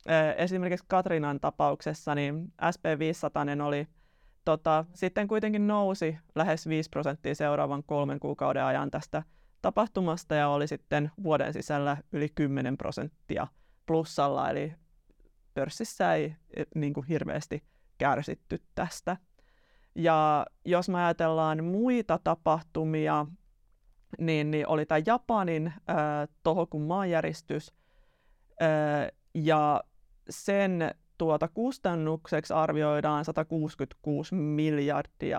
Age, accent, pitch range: 30-49, native, 150-170 Hz